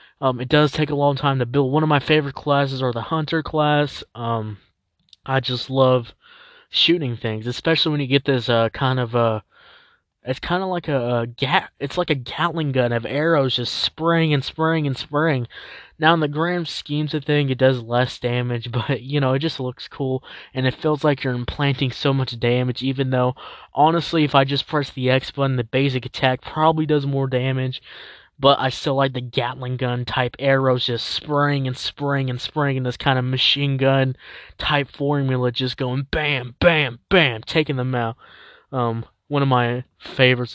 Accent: American